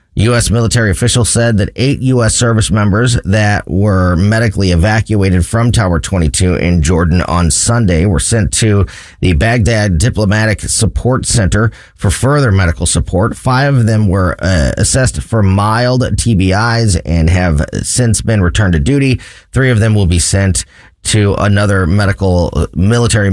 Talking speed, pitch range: 150 wpm, 90-120 Hz